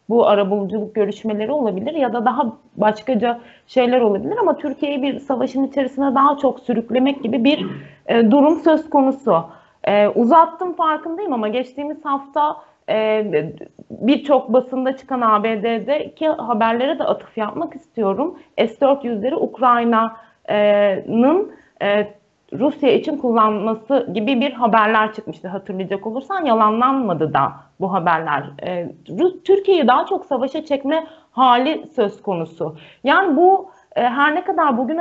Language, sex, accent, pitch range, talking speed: Turkish, female, native, 220-290 Hz, 120 wpm